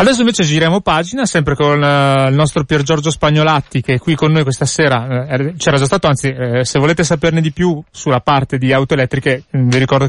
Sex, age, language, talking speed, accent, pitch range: male, 30-49, Italian, 215 wpm, native, 135-175 Hz